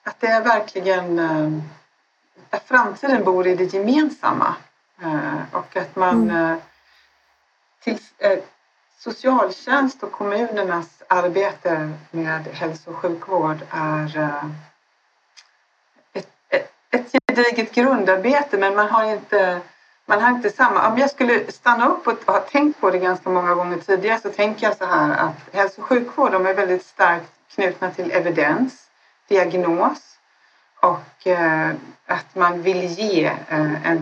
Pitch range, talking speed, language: 170-225 Hz, 125 wpm, Swedish